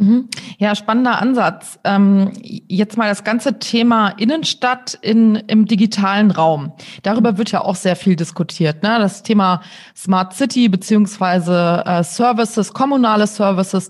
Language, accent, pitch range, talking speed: German, German, 190-230 Hz, 135 wpm